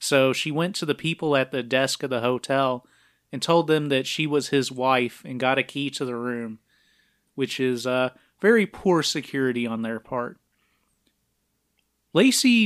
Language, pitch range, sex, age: English, 125-175 Hz, male, 30-49